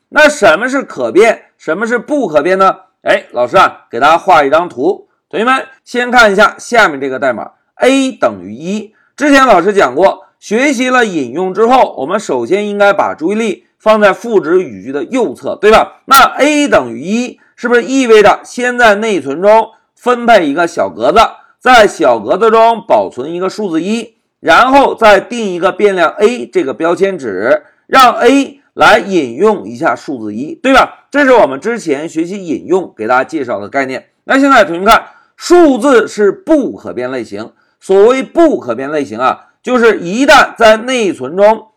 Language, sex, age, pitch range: Chinese, male, 50-69, 210-300 Hz